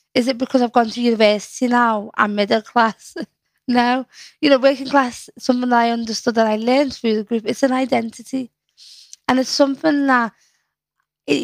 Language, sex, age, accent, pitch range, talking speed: English, female, 20-39, British, 225-265 Hz, 175 wpm